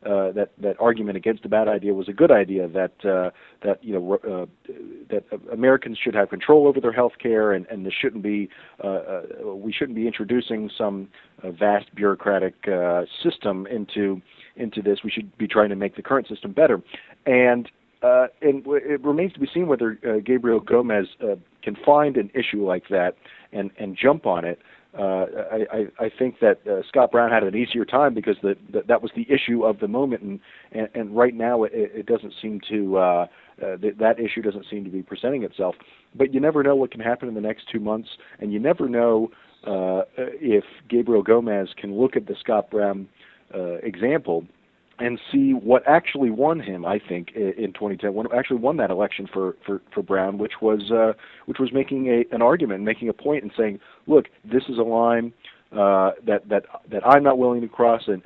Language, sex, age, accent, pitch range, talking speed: English, male, 40-59, American, 100-125 Hz, 210 wpm